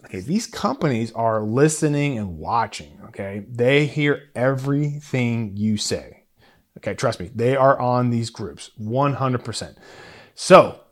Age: 30-49